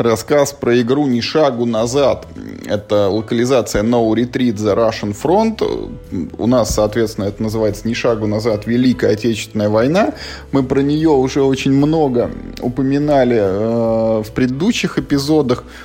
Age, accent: 20-39, native